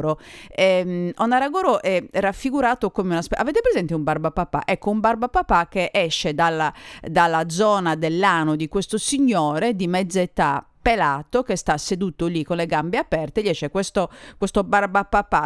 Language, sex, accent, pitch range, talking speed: Italian, female, native, 155-205 Hz, 155 wpm